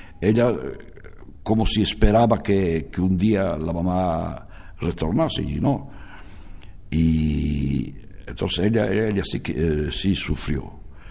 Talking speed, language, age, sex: 115 wpm, Spanish, 60-79, male